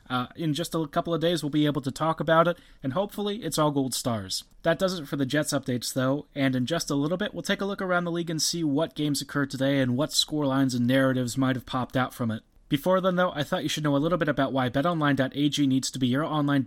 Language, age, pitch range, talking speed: English, 30-49, 135-165 Hz, 275 wpm